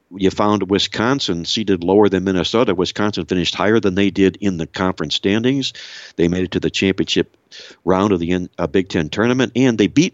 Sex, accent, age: male, American, 60-79